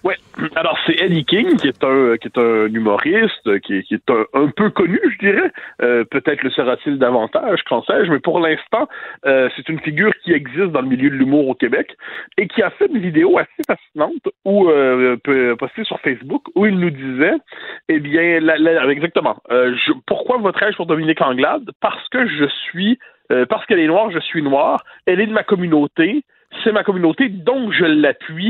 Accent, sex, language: French, male, French